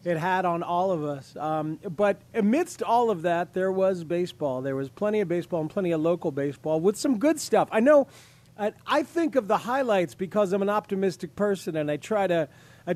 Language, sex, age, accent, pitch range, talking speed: English, male, 40-59, American, 160-210 Hz, 220 wpm